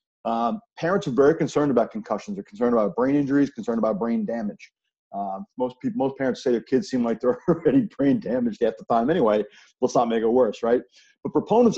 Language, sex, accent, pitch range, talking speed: English, male, American, 120-165 Hz, 230 wpm